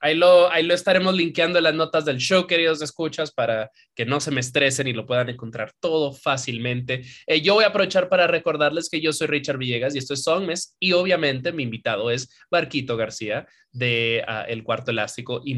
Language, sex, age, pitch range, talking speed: English, male, 20-39, 125-165 Hz, 210 wpm